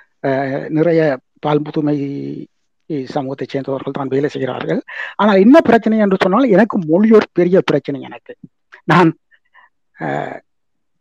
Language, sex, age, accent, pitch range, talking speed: Tamil, male, 60-79, native, 155-205 Hz, 105 wpm